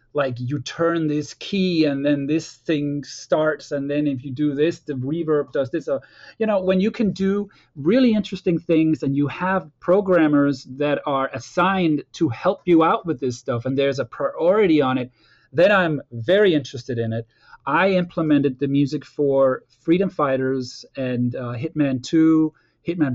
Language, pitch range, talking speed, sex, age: English, 135-165 Hz, 175 wpm, male, 30-49